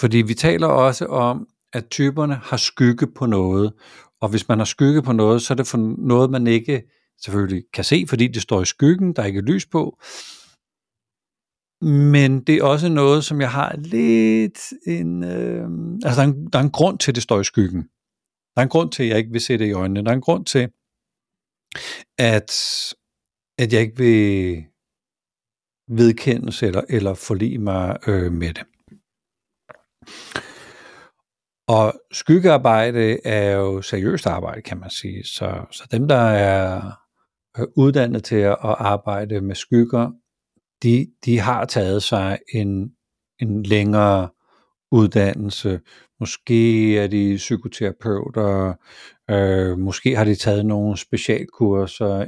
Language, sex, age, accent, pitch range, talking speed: Danish, male, 60-79, native, 100-125 Hz, 150 wpm